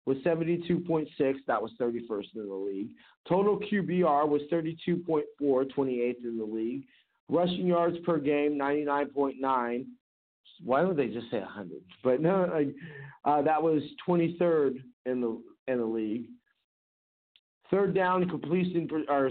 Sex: male